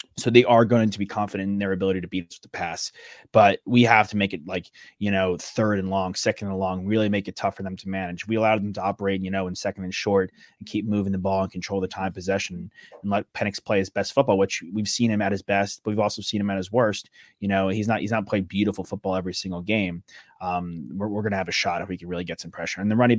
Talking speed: 285 wpm